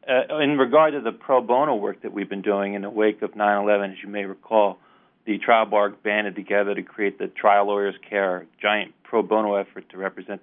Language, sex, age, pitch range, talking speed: English, male, 40-59, 95-110 Hz, 220 wpm